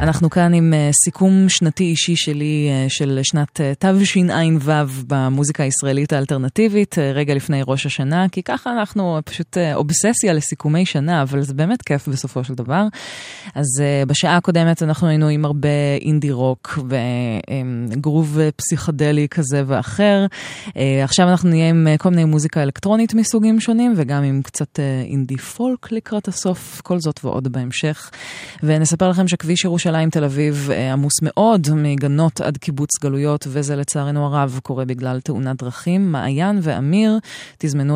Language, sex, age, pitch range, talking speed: Hebrew, female, 20-39, 140-175 Hz, 140 wpm